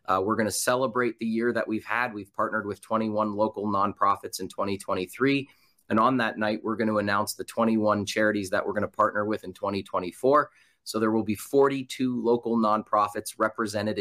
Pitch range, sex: 105-115 Hz, male